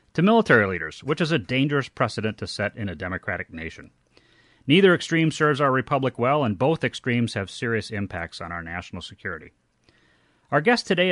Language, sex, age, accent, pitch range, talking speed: English, male, 30-49, American, 105-150 Hz, 180 wpm